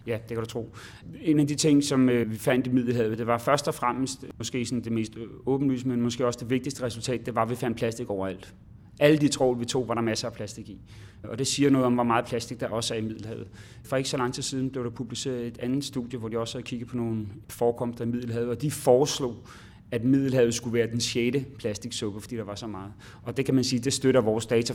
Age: 30-49